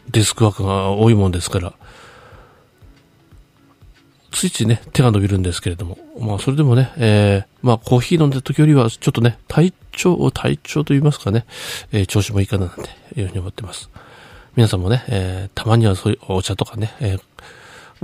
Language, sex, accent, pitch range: Japanese, male, native, 95-115 Hz